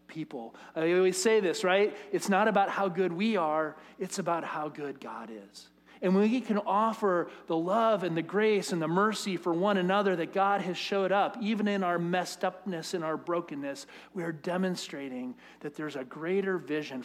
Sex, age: male, 40-59